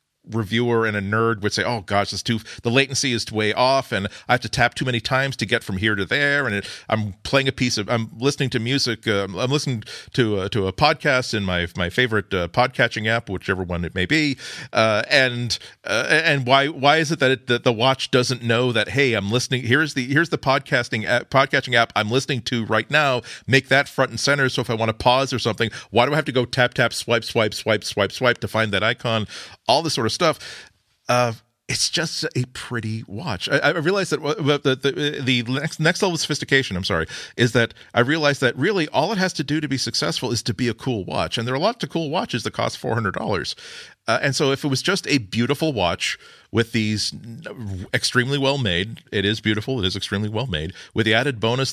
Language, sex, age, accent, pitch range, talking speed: English, male, 40-59, American, 110-135 Hz, 235 wpm